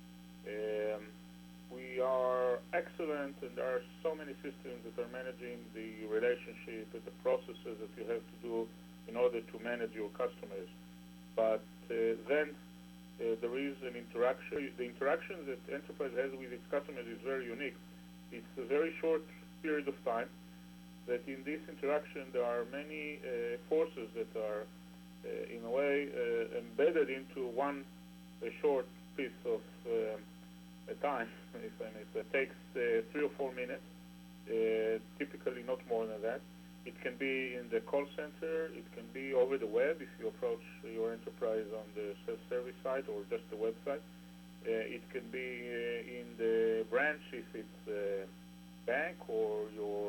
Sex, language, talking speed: male, English, 165 wpm